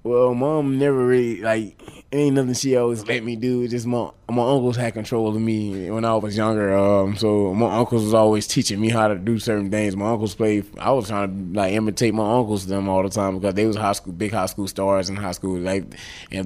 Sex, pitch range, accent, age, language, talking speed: male, 95-110 Hz, American, 20-39, English, 250 wpm